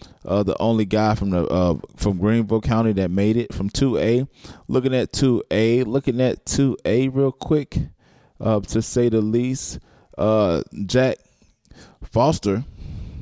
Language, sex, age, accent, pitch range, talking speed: English, male, 20-39, American, 100-130 Hz, 155 wpm